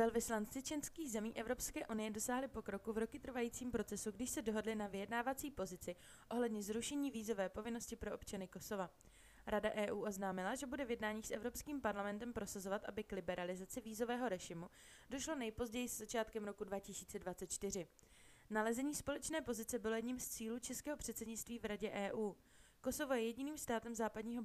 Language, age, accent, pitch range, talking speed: Czech, 20-39, native, 200-240 Hz, 155 wpm